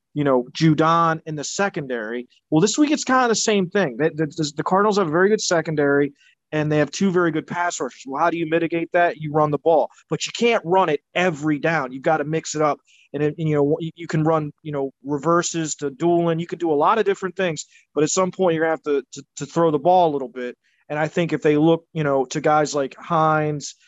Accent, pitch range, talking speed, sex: American, 140-170 Hz, 260 wpm, male